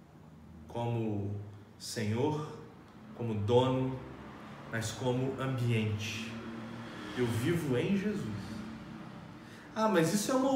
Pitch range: 120-180 Hz